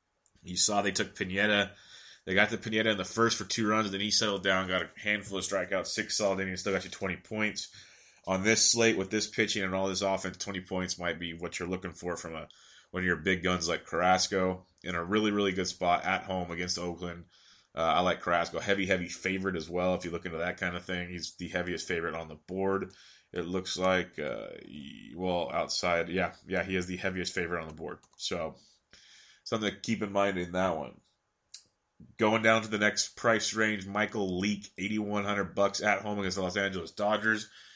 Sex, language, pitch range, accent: male, English, 90-105 Hz, American